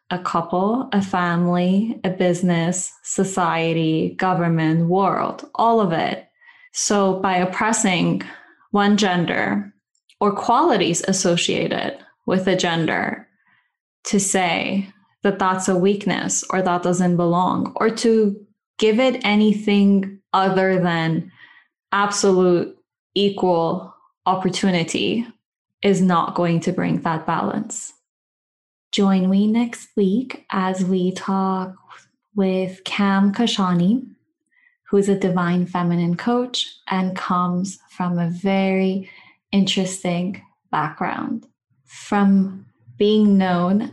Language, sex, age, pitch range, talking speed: English, female, 10-29, 175-200 Hz, 100 wpm